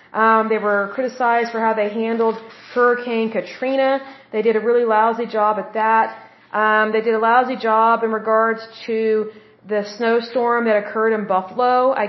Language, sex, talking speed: German, female, 170 wpm